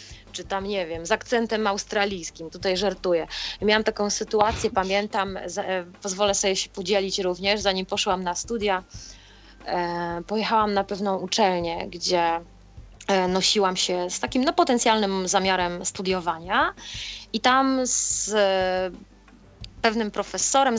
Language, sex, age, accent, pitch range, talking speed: Polish, female, 20-39, native, 185-235 Hz, 115 wpm